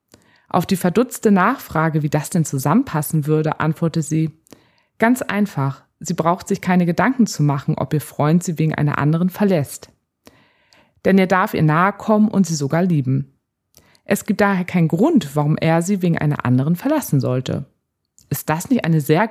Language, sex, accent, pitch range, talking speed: German, female, German, 150-195 Hz, 175 wpm